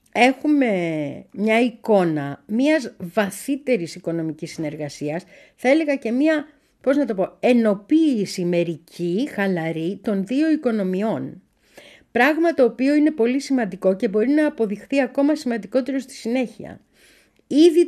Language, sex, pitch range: Greek, female, 175-265 Hz